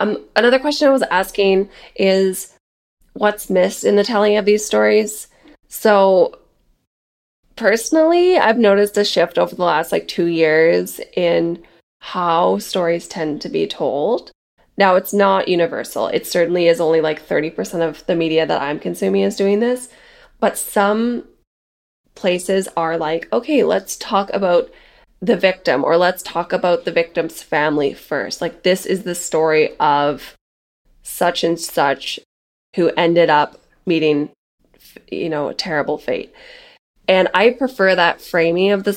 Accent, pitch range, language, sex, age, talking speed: American, 165-205 Hz, English, female, 20-39, 150 wpm